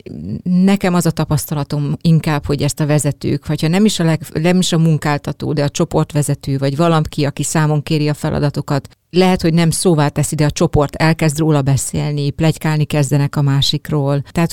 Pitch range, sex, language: 145-165 Hz, female, Hungarian